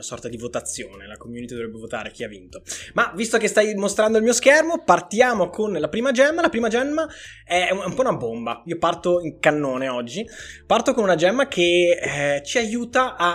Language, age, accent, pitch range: Italian, 20-39, native, 135-225 Hz